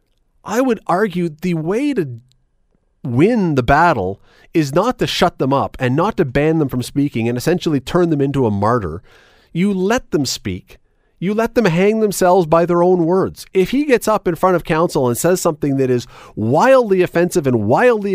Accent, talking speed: American, 195 wpm